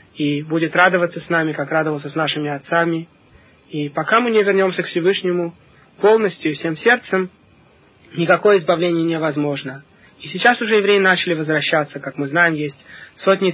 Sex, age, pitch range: male, 20-39, 155-185 Hz